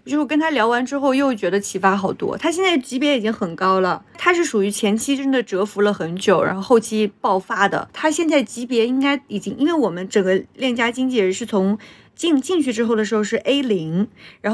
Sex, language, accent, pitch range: female, Chinese, native, 205-285 Hz